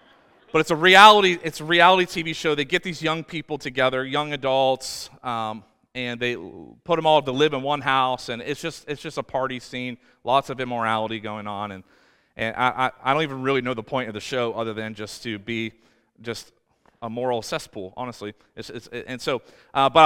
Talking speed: 210 wpm